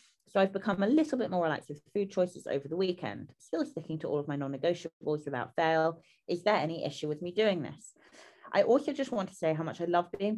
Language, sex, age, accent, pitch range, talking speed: English, female, 30-49, British, 160-220 Hz, 245 wpm